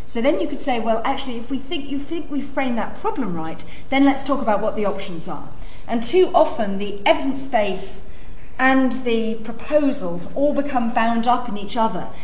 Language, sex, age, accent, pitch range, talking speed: English, female, 40-59, British, 205-260 Hz, 200 wpm